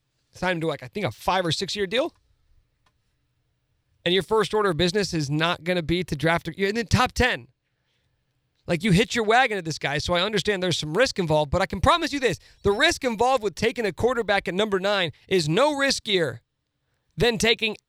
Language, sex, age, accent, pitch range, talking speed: English, male, 40-59, American, 150-200 Hz, 220 wpm